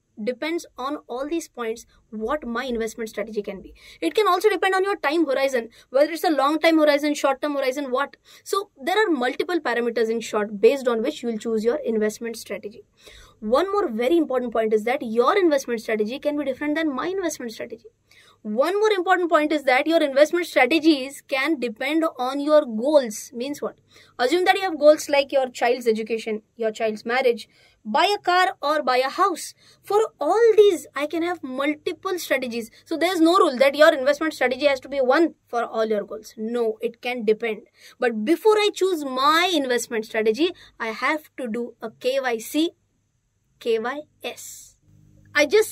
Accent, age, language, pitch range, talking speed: Indian, 20-39, English, 235-330 Hz, 185 wpm